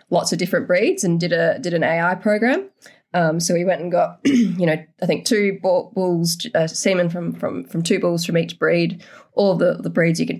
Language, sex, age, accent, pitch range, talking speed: English, female, 20-39, Australian, 165-190 Hz, 225 wpm